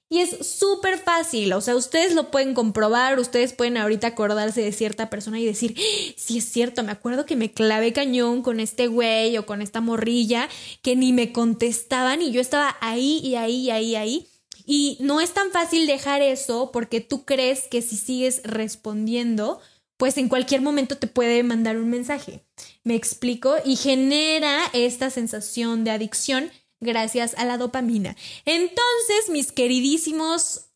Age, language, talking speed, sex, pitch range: 10-29, Spanish, 170 wpm, female, 230-280 Hz